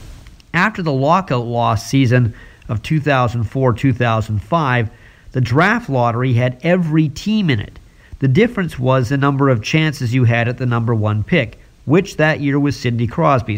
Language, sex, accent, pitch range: English, male, American, 115-150 Hz